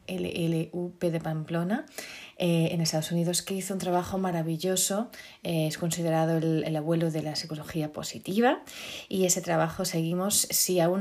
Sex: female